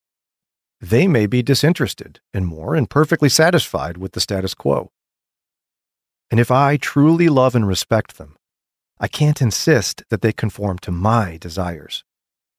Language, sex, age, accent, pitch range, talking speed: English, male, 40-59, American, 95-130 Hz, 145 wpm